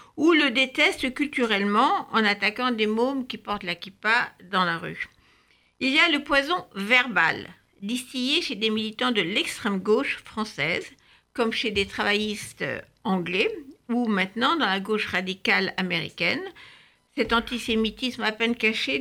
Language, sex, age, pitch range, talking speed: French, female, 60-79, 200-260 Hz, 140 wpm